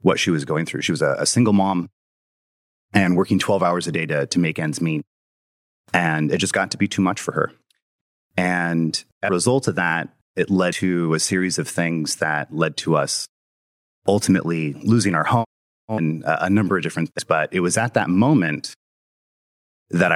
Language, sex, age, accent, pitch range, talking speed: English, male, 30-49, American, 80-105 Hz, 195 wpm